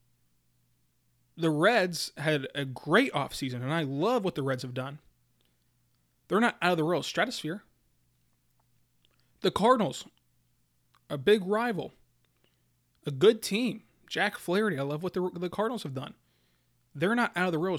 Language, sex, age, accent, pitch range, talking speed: English, male, 20-39, American, 130-205 Hz, 150 wpm